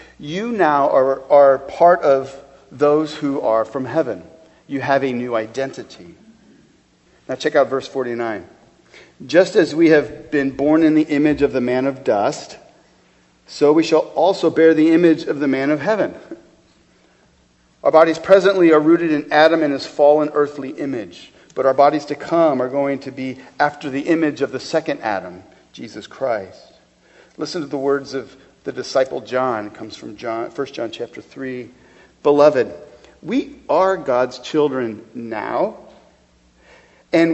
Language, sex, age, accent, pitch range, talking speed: English, male, 40-59, American, 115-165 Hz, 160 wpm